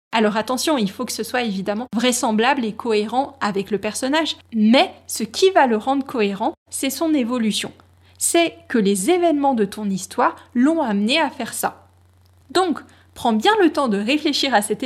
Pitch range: 210-310 Hz